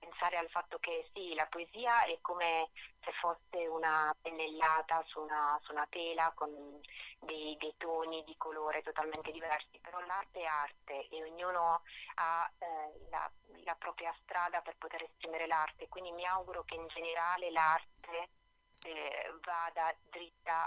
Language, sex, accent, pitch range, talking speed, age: Italian, female, native, 160-175 Hz, 150 wpm, 30-49